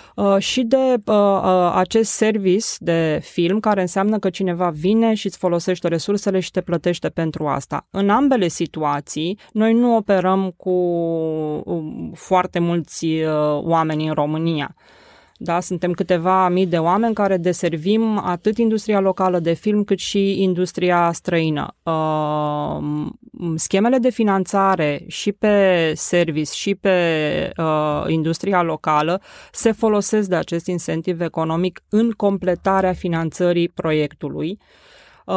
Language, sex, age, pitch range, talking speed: Romanian, female, 20-39, 165-200 Hz, 115 wpm